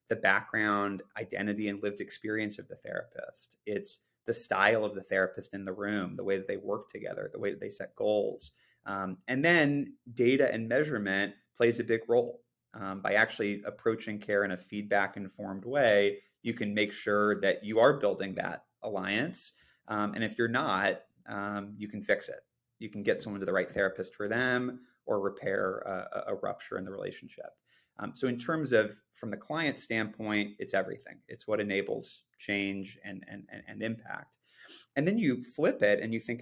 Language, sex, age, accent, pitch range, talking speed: English, male, 30-49, American, 100-120 Hz, 190 wpm